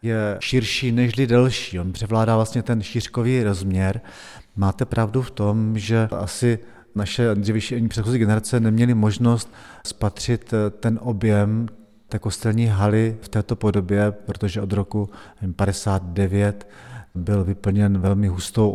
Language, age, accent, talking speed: Czech, 40-59, native, 125 wpm